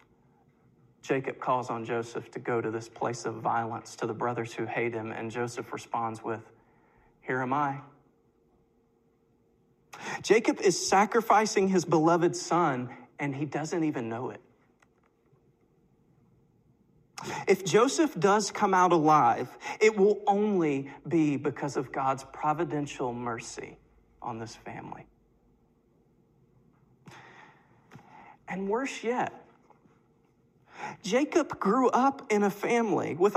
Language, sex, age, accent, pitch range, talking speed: English, male, 40-59, American, 130-215 Hz, 115 wpm